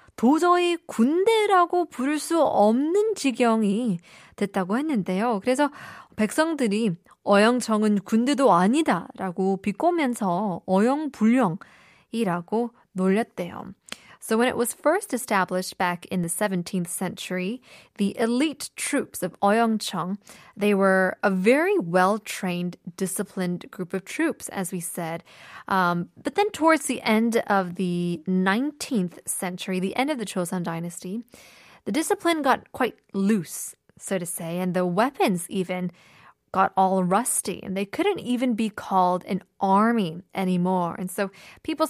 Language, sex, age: Korean, female, 20-39